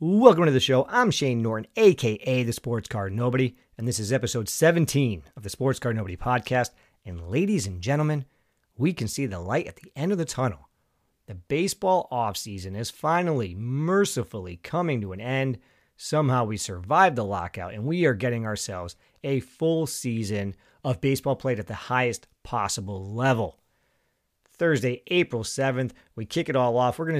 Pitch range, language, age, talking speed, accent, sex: 105-140 Hz, English, 40-59, 175 wpm, American, male